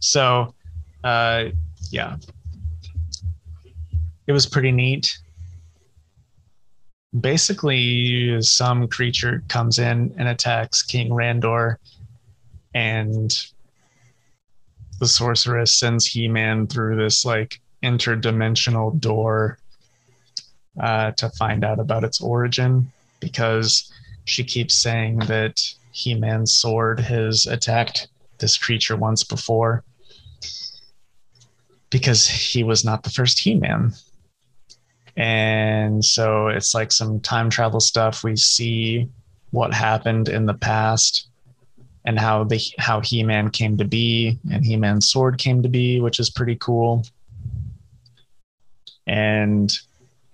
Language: English